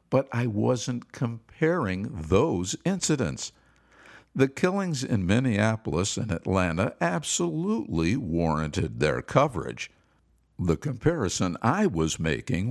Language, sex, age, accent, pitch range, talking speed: English, male, 60-79, American, 85-140 Hz, 100 wpm